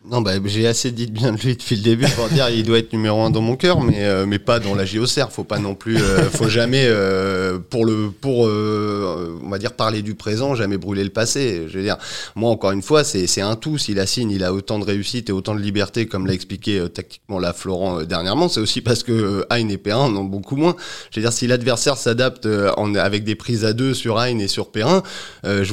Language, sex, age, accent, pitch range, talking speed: French, male, 30-49, French, 100-120 Hz, 265 wpm